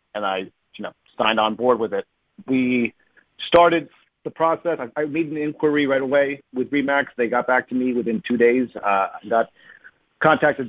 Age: 40-59